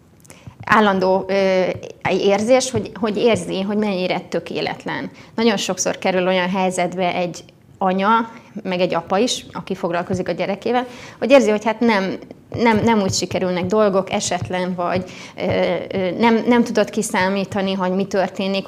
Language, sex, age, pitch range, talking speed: Hungarian, female, 20-39, 185-220 Hz, 130 wpm